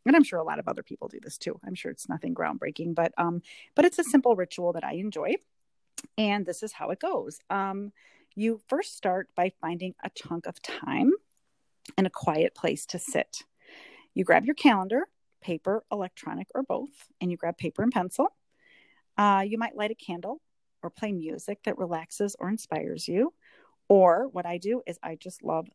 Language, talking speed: English, 195 wpm